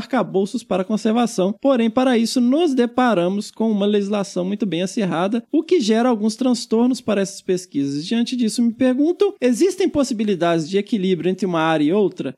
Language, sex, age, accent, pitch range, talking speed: Portuguese, male, 20-39, Brazilian, 195-260 Hz, 170 wpm